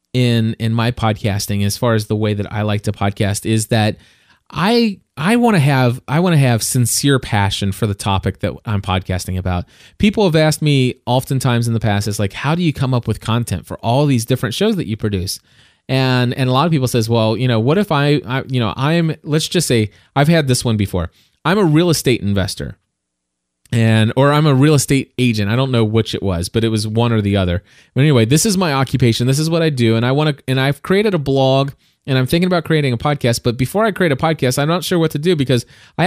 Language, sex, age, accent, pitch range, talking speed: English, male, 20-39, American, 110-155 Hz, 250 wpm